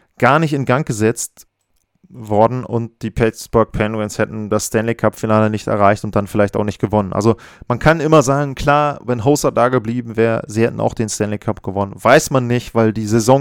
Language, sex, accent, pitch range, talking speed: German, male, German, 110-140 Hz, 210 wpm